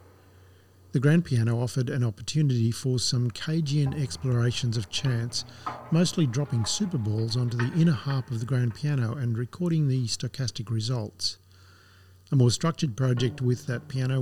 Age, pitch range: 50-69, 115-140 Hz